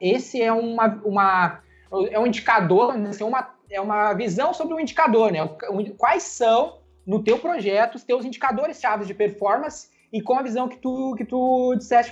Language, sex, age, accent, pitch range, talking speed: Portuguese, male, 20-39, Brazilian, 205-255 Hz, 180 wpm